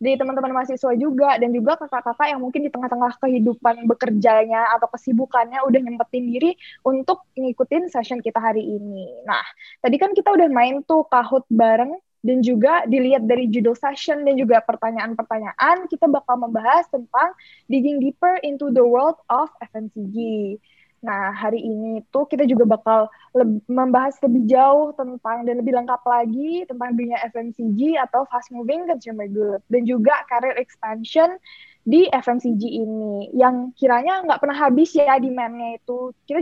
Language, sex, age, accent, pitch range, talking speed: Indonesian, female, 20-39, native, 235-285 Hz, 155 wpm